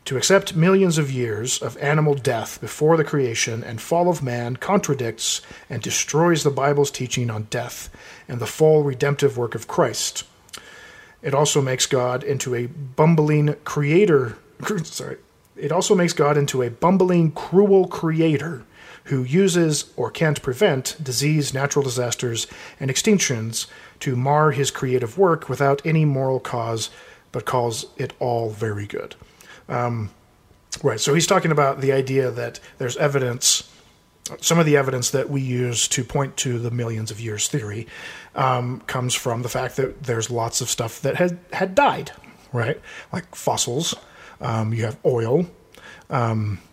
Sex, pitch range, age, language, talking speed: male, 120-150 Hz, 40-59, English, 155 wpm